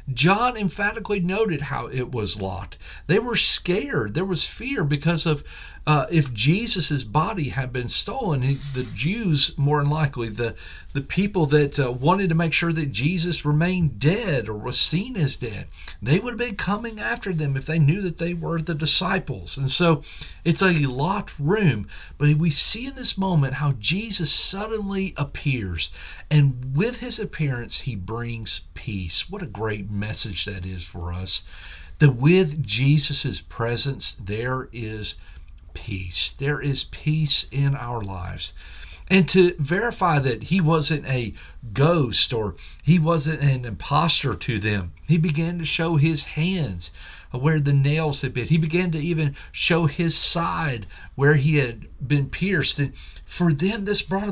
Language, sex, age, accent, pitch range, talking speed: English, male, 50-69, American, 115-170 Hz, 165 wpm